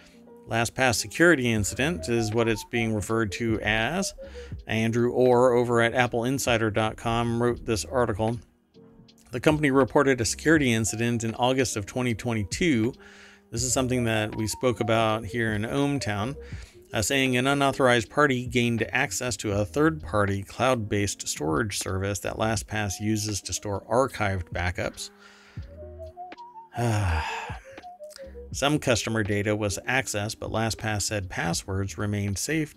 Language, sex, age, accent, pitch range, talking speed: English, male, 40-59, American, 105-125 Hz, 130 wpm